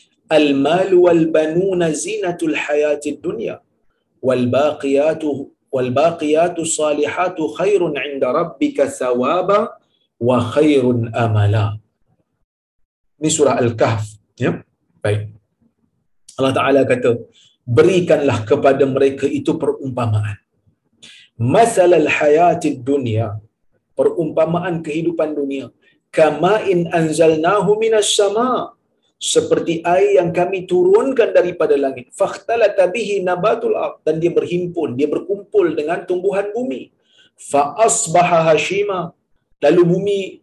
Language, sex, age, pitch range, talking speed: Malayalam, male, 40-59, 130-215 Hz, 90 wpm